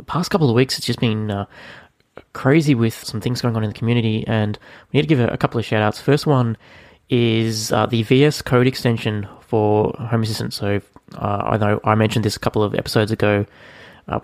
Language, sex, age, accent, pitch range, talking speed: English, male, 20-39, Australian, 105-120 Hz, 220 wpm